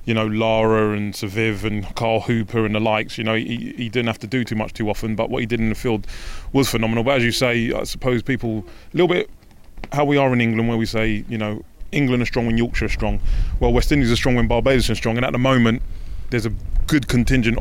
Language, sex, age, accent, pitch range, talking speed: English, male, 20-39, British, 115-145 Hz, 260 wpm